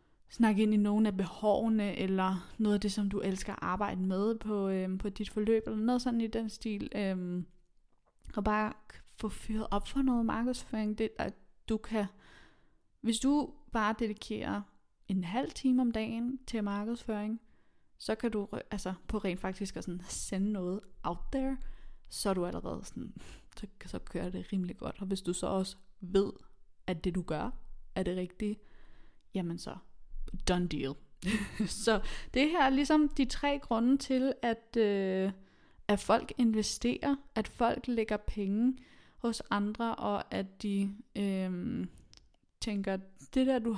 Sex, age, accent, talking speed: female, 20-39, native, 165 wpm